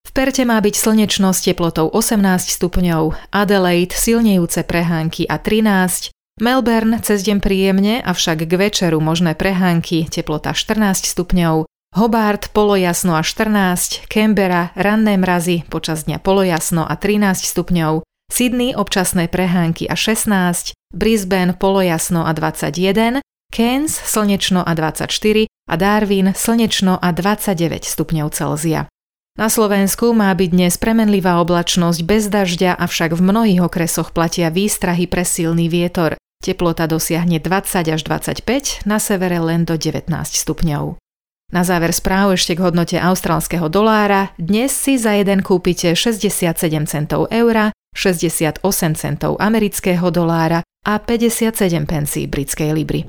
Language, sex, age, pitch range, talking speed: Slovak, female, 30-49, 170-210 Hz, 125 wpm